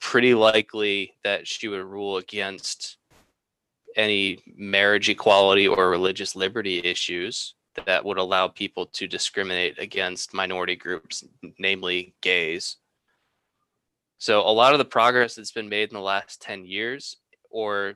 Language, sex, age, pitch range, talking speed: English, male, 20-39, 95-110 Hz, 135 wpm